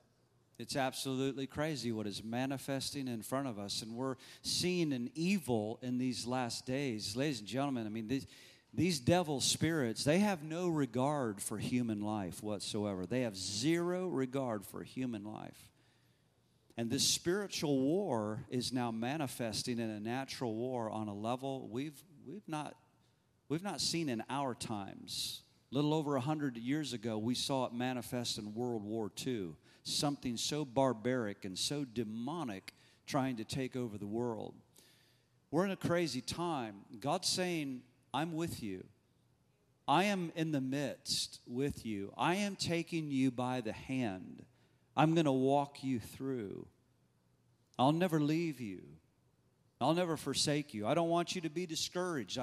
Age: 40-59